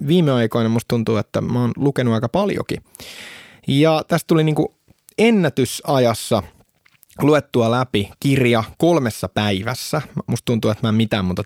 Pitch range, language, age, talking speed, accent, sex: 100-130 Hz, Finnish, 20-39, 145 wpm, native, male